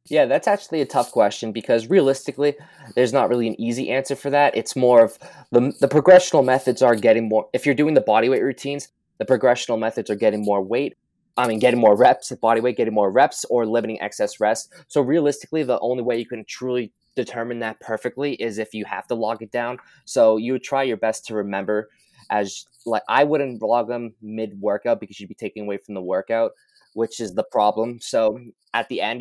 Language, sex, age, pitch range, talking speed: English, male, 20-39, 105-130 Hz, 210 wpm